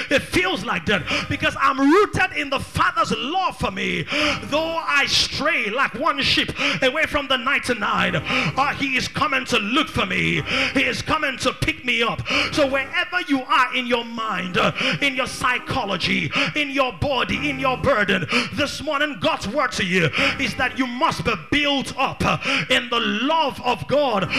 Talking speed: 180 wpm